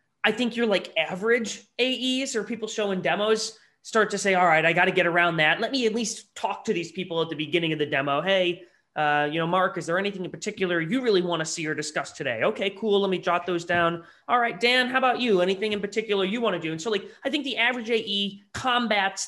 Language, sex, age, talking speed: English, male, 20-39, 255 wpm